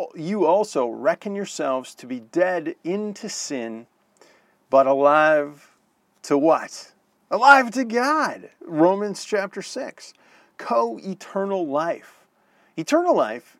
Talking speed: 100 wpm